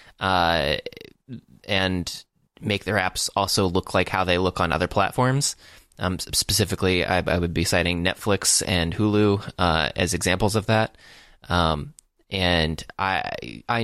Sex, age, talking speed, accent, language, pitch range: male, 20-39, 140 wpm, American, English, 90-105 Hz